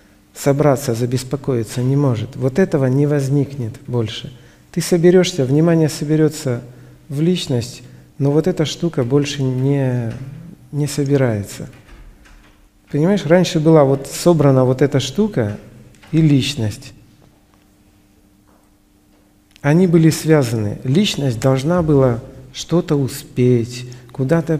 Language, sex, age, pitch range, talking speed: Russian, male, 50-69, 125-155 Hz, 100 wpm